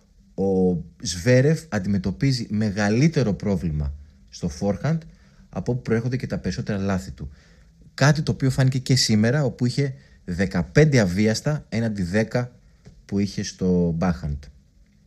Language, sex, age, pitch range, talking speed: Greek, male, 30-49, 90-145 Hz, 125 wpm